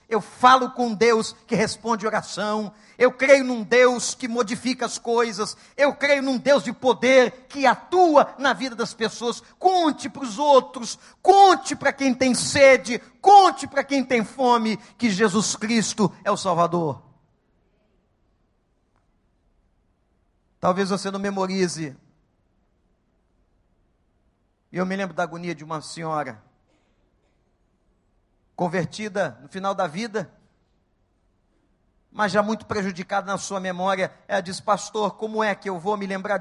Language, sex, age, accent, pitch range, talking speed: English, male, 50-69, Brazilian, 160-245 Hz, 135 wpm